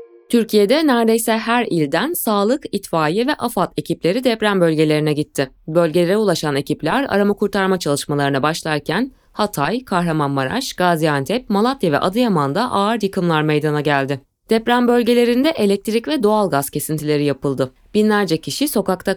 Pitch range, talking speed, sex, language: 155-230 Hz, 120 wpm, female, Turkish